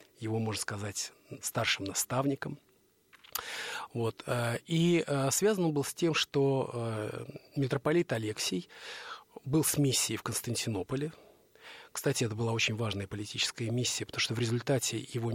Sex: male